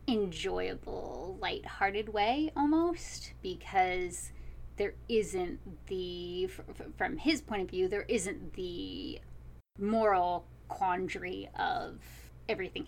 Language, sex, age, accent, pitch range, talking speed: English, female, 20-39, American, 180-275 Hz, 100 wpm